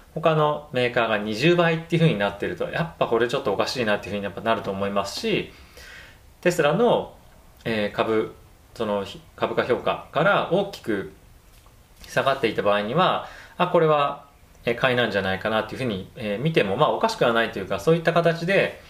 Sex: male